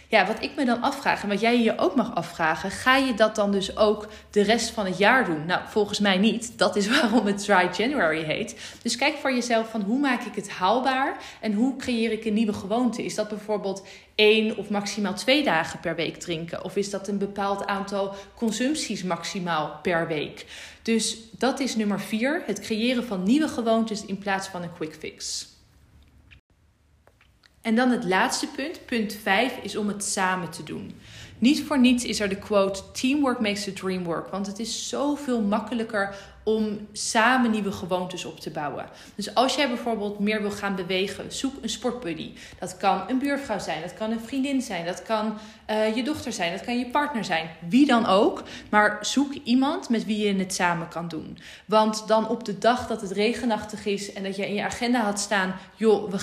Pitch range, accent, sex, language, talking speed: 195-235 Hz, Dutch, female, Dutch, 205 wpm